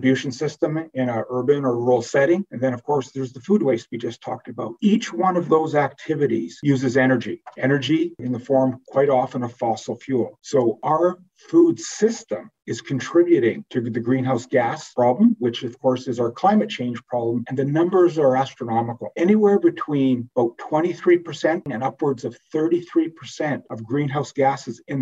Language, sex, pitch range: English, male, 130-175 Hz